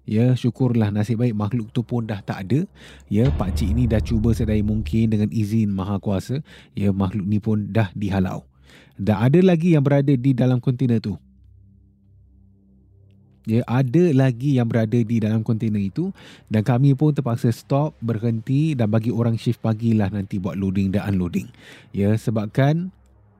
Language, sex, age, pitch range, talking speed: Malay, male, 20-39, 100-130 Hz, 160 wpm